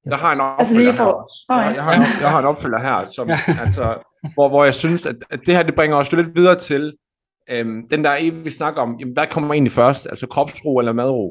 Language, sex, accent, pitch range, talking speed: Danish, male, native, 130-165 Hz, 210 wpm